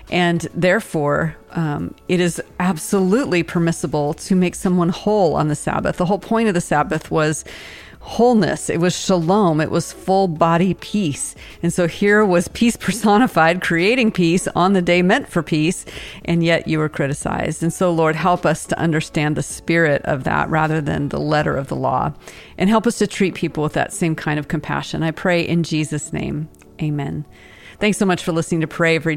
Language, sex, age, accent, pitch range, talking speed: English, female, 40-59, American, 155-190 Hz, 190 wpm